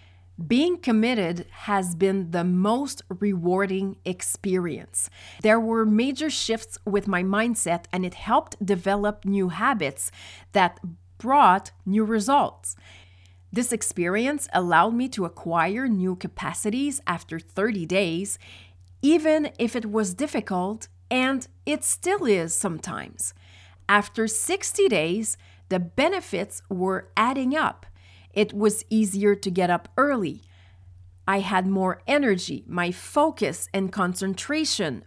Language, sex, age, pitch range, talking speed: English, female, 40-59, 165-225 Hz, 120 wpm